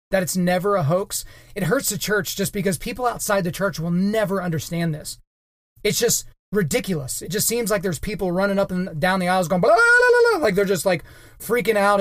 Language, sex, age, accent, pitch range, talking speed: English, male, 30-49, American, 165-195 Hz, 205 wpm